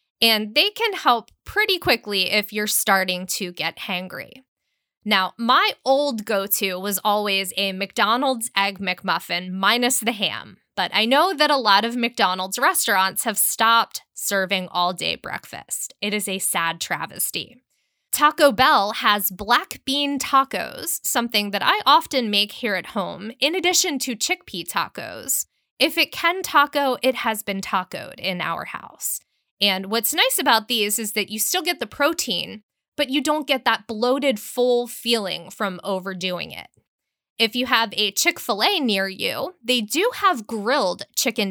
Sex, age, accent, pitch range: female, 10-29, American, 200-270 Hz